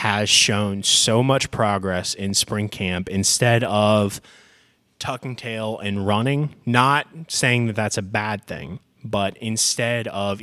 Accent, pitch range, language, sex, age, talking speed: American, 95-115 Hz, English, male, 20-39, 140 wpm